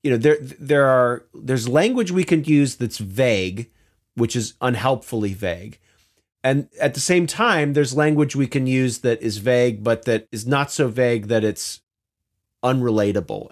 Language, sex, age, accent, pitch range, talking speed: English, male, 40-59, American, 110-140 Hz, 170 wpm